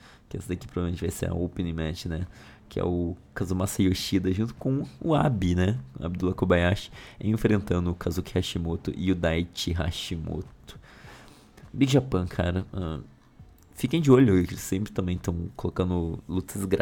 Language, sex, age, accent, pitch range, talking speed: Portuguese, male, 20-39, Brazilian, 85-100 Hz, 150 wpm